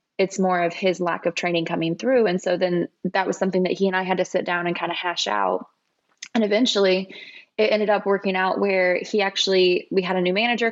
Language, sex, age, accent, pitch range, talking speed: English, female, 20-39, American, 180-205 Hz, 240 wpm